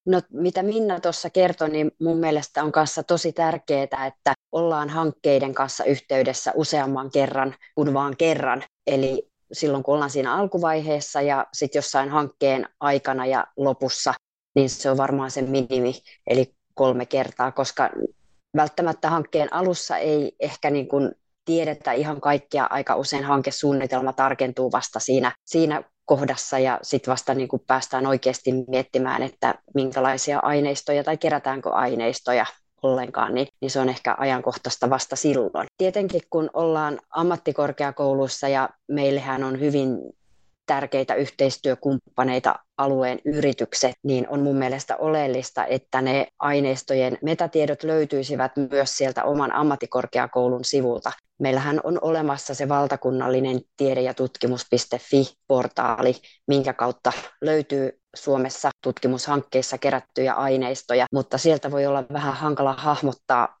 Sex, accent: female, native